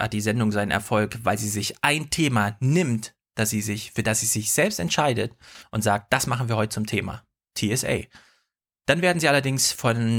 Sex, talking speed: male, 200 wpm